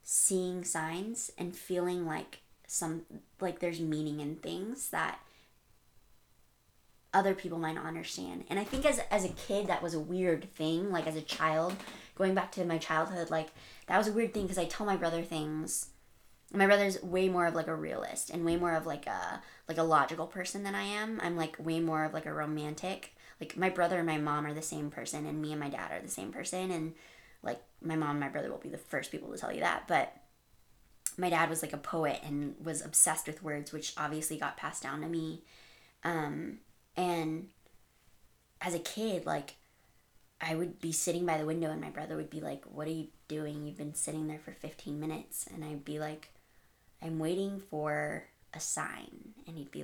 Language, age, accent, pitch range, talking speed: English, 20-39, American, 155-180 Hz, 210 wpm